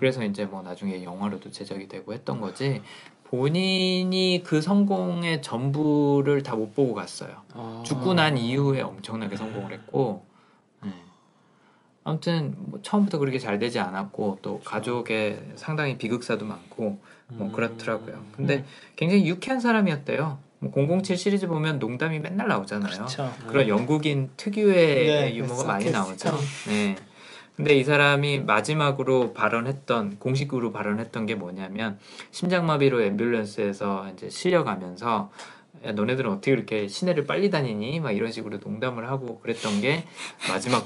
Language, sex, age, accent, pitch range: Korean, male, 20-39, native, 110-160 Hz